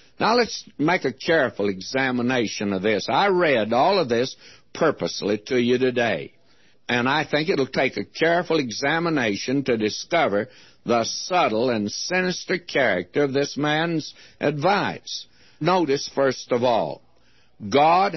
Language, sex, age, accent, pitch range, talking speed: English, male, 60-79, American, 120-160 Hz, 135 wpm